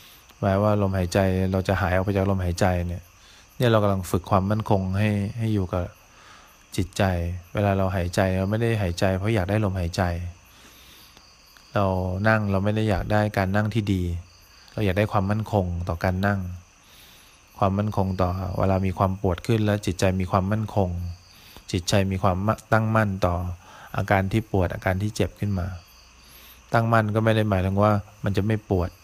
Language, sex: English, male